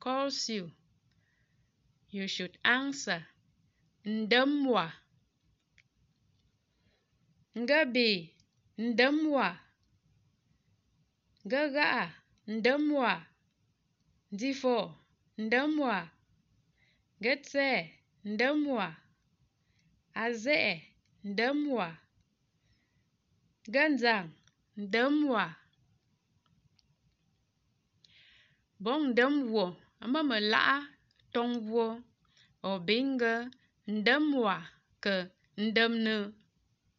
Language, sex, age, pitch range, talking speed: English, female, 20-39, 180-255 Hz, 40 wpm